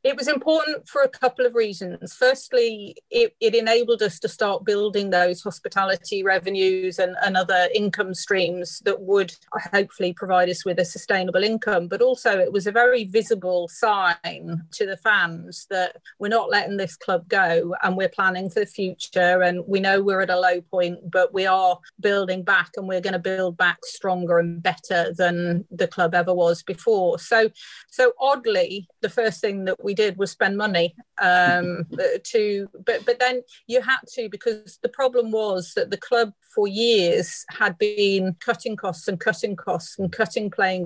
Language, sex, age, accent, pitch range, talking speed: English, female, 40-59, British, 180-230 Hz, 180 wpm